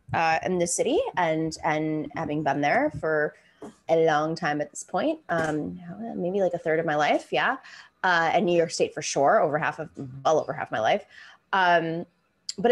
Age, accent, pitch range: 20-39, American, 175-265 Hz